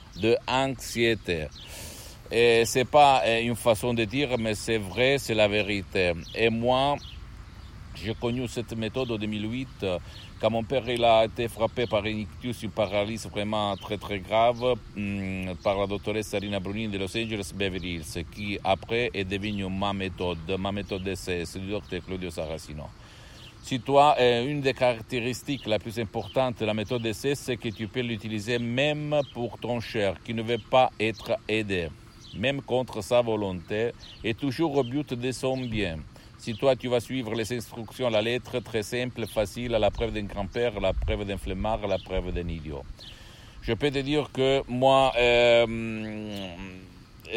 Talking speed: 170 wpm